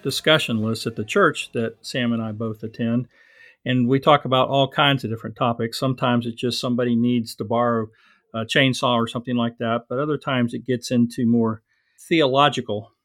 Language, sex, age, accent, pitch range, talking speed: English, male, 50-69, American, 115-135 Hz, 190 wpm